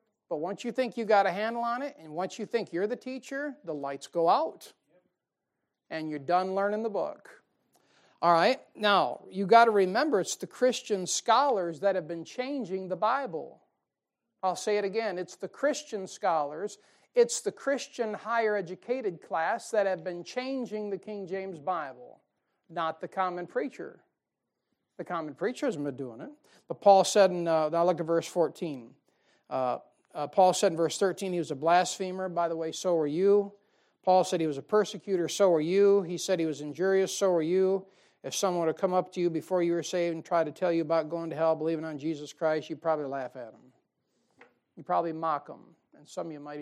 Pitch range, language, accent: 170-215 Hz, English, American